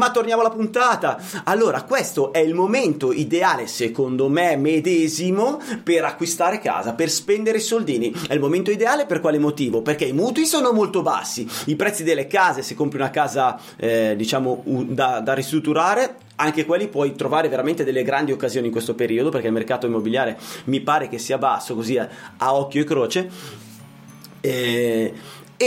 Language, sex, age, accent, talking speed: Italian, male, 30-49, native, 170 wpm